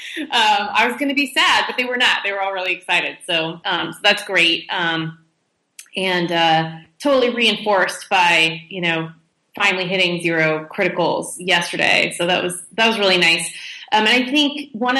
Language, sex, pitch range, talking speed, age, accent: Swedish, female, 170-210 Hz, 185 wpm, 20-39, American